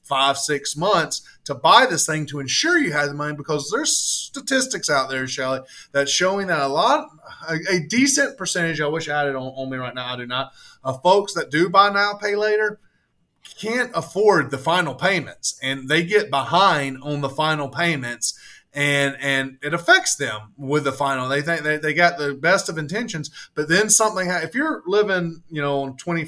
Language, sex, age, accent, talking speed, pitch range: English, male, 20-39, American, 200 wpm, 135-185 Hz